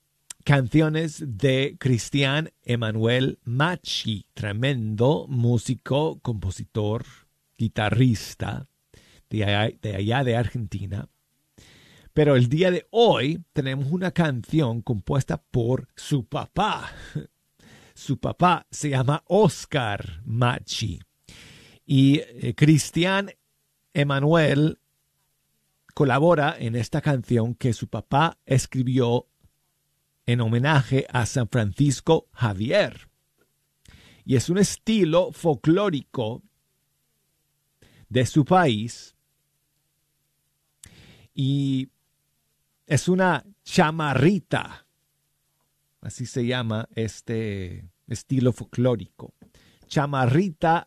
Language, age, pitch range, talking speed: Spanish, 50-69, 115-150 Hz, 80 wpm